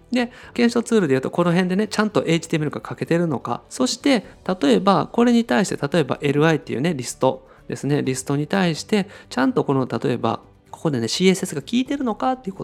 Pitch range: 140-210 Hz